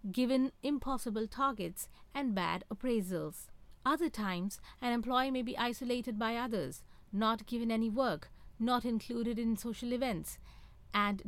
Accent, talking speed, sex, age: Indian, 135 wpm, female, 50-69